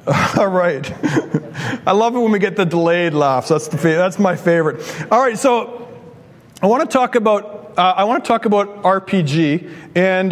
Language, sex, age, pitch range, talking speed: English, male, 40-59, 160-205 Hz, 185 wpm